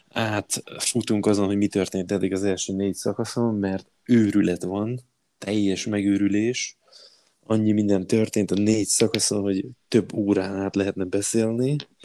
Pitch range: 95-110 Hz